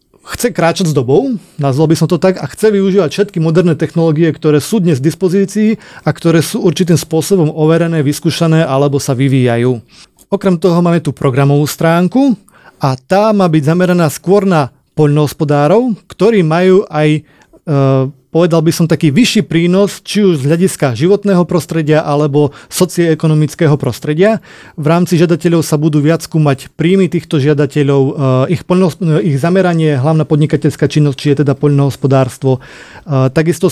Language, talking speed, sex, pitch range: Slovak, 150 wpm, male, 150-185 Hz